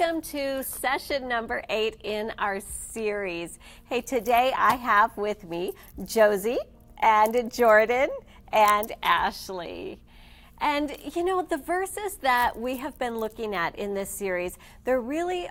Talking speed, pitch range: 135 wpm, 195-255 Hz